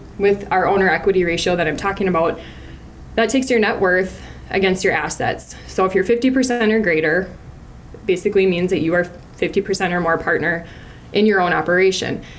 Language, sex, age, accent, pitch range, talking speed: English, female, 20-39, American, 170-205 Hz, 175 wpm